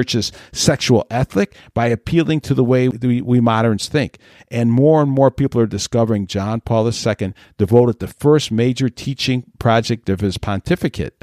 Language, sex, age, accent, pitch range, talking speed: English, male, 50-69, American, 105-135 Hz, 160 wpm